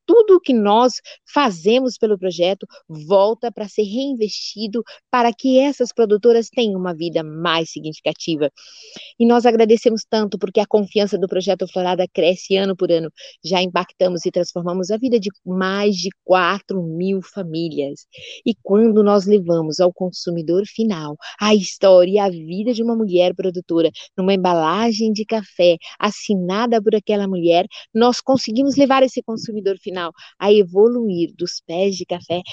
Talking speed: 150 wpm